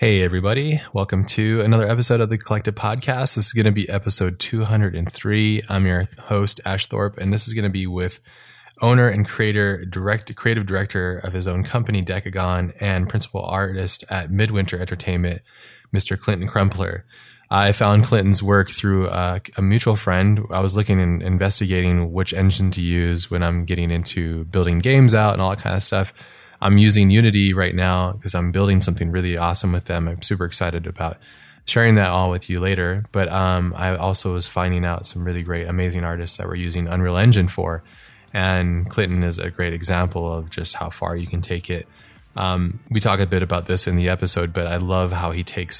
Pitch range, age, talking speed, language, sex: 90-100 Hz, 20-39, 200 wpm, English, male